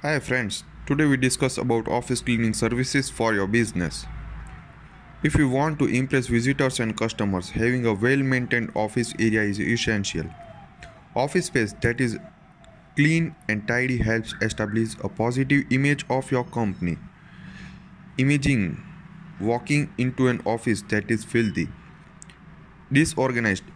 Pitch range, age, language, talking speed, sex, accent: 115-145 Hz, 20-39, English, 130 wpm, male, Indian